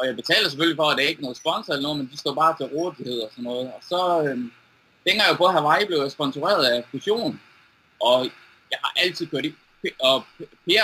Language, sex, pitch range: Danish, male, 130-165 Hz